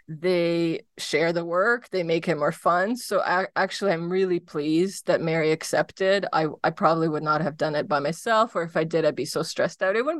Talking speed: 230 wpm